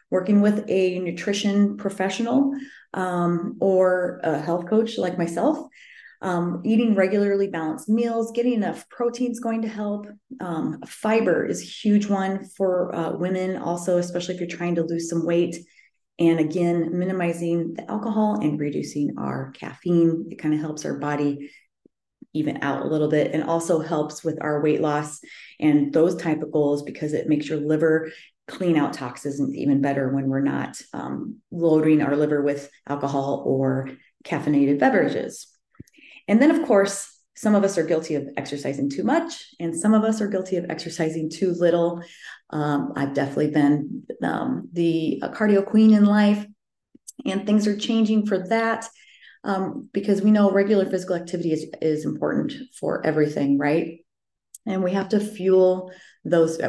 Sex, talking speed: female, 165 wpm